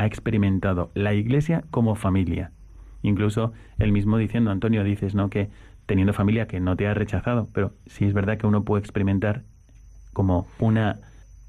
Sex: male